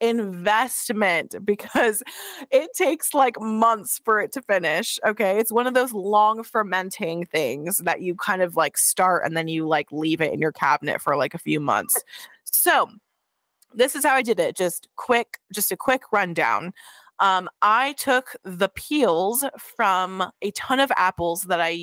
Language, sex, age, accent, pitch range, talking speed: English, female, 20-39, American, 175-220 Hz, 175 wpm